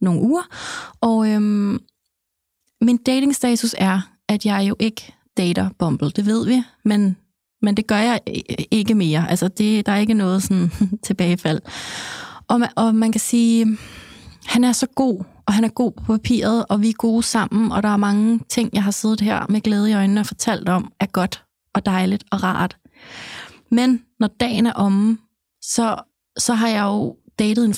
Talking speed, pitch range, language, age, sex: 185 wpm, 195-230 Hz, Danish, 20-39, female